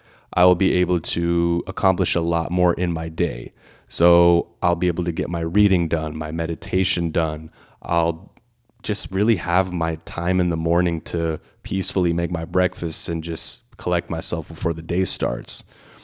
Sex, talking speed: male, 170 wpm